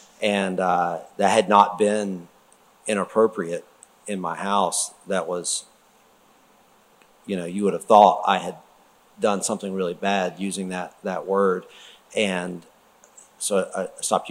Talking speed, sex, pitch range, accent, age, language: 135 wpm, male, 90-105 Hz, American, 50-69, English